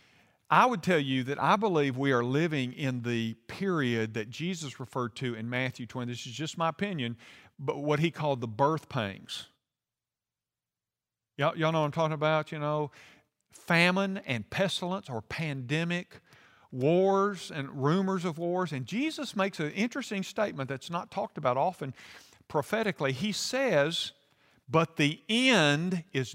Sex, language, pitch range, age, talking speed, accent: male, English, 135-200 Hz, 50-69, 155 wpm, American